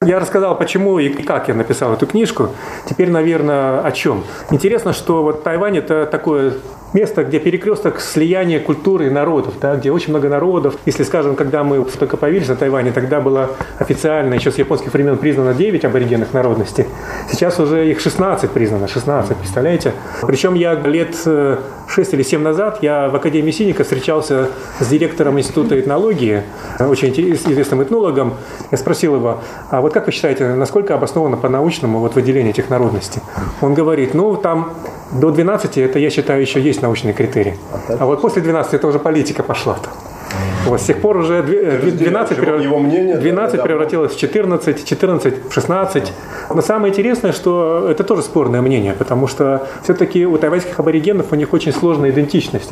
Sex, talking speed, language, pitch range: male, 165 wpm, Russian, 135-170 Hz